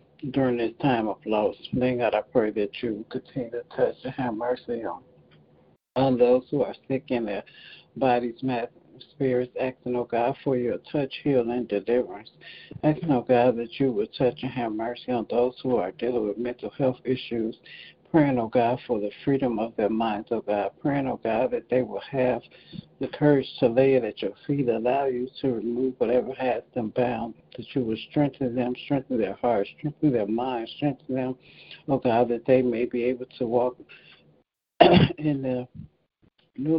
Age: 60-79